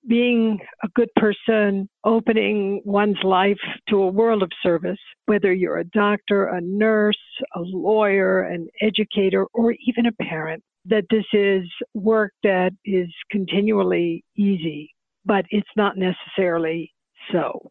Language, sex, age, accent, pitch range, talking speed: English, female, 60-79, American, 185-230 Hz, 130 wpm